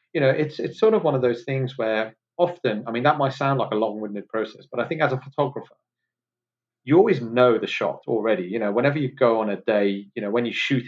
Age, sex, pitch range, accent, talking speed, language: 30-49, male, 100-125 Hz, British, 255 wpm, English